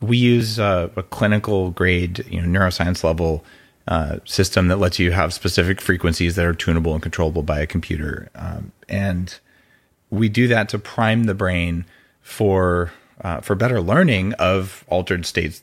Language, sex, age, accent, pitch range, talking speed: English, male, 30-49, American, 90-130 Hz, 165 wpm